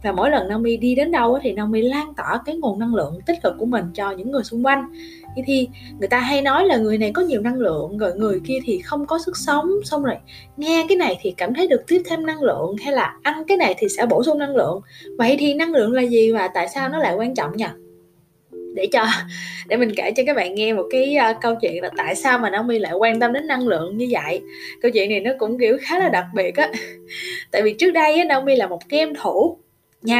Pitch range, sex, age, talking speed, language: 220-310 Hz, female, 10-29, 260 wpm, Vietnamese